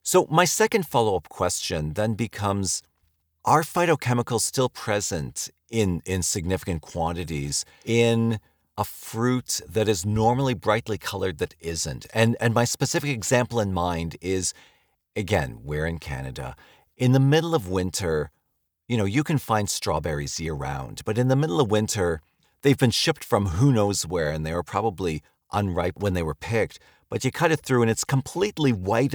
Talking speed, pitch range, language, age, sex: 165 wpm, 80-120 Hz, English, 40-59, male